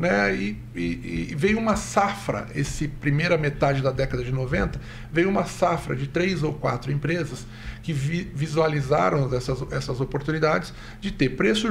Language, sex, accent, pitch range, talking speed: Portuguese, male, Brazilian, 130-170 Hz, 155 wpm